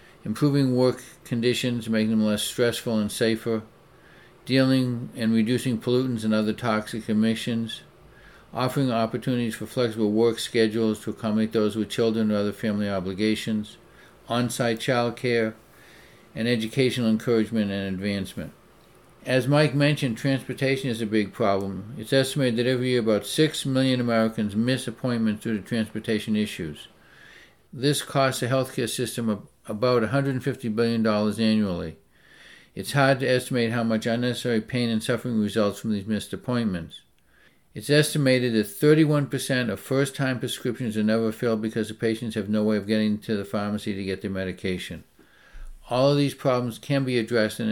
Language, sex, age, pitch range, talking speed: English, male, 60-79, 110-125 Hz, 155 wpm